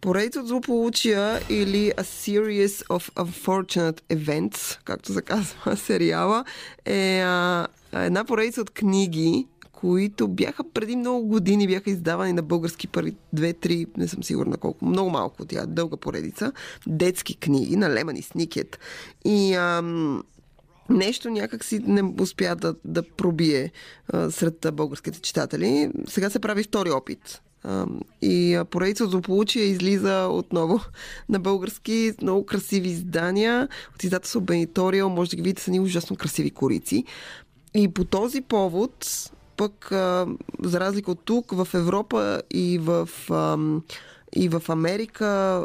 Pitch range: 170-210 Hz